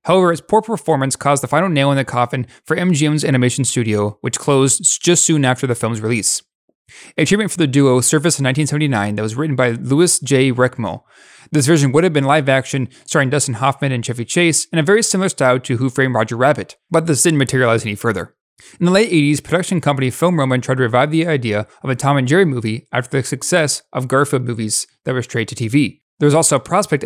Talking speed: 225 wpm